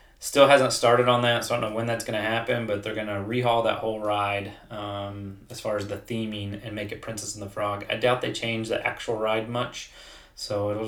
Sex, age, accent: male, 20-39, American